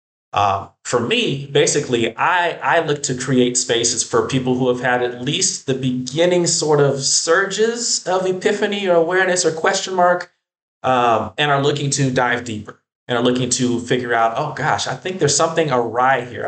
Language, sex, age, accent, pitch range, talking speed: English, male, 30-49, American, 110-140 Hz, 180 wpm